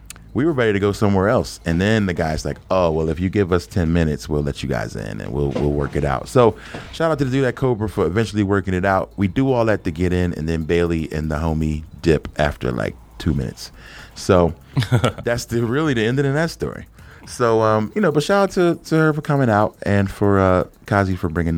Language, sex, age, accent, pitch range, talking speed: English, male, 30-49, American, 80-110 Hz, 250 wpm